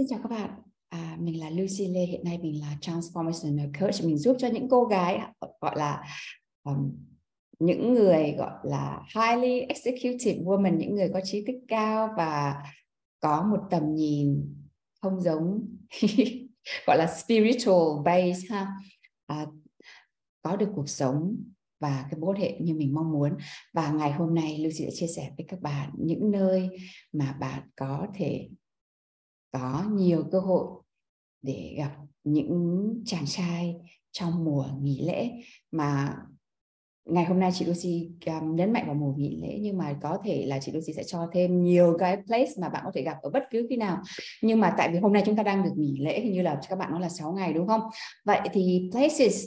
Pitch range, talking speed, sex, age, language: 150-210 Hz, 185 wpm, female, 20-39, Vietnamese